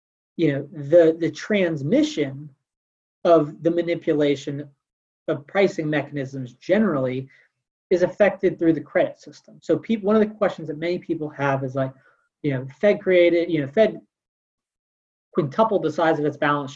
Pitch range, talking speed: 140-170 Hz, 155 wpm